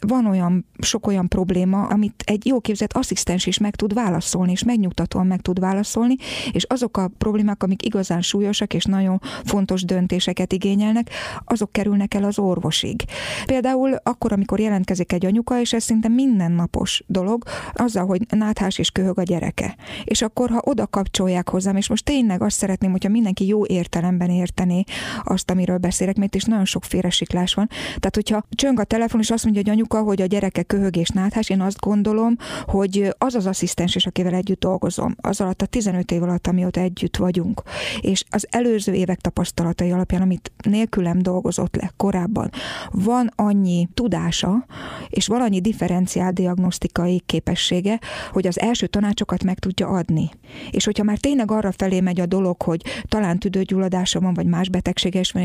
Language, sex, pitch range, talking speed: Hungarian, female, 180-215 Hz, 170 wpm